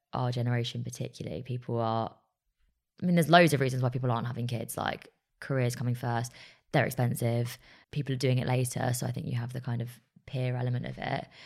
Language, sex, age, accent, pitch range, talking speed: English, female, 20-39, British, 115-130 Hz, 205 wpm